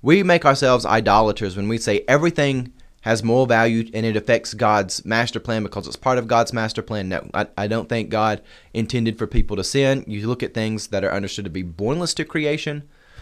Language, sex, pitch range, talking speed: English, male, 105-130 Hz, 215 wpm